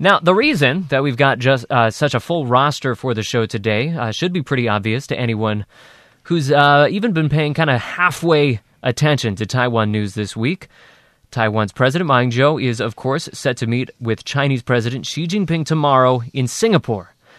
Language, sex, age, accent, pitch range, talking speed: English, male, 20-39, American, 115-150 Hz, 190 wpm